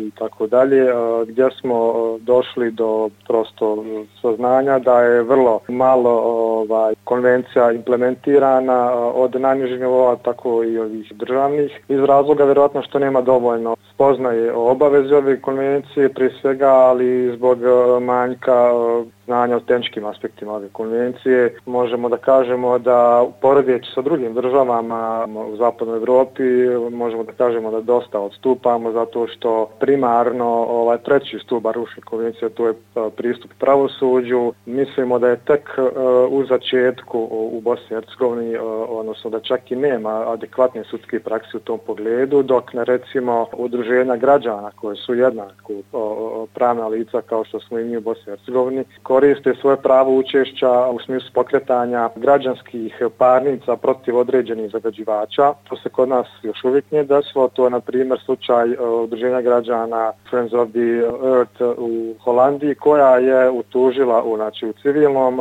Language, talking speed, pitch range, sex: English, 140 wpm, 115-130 Hz, male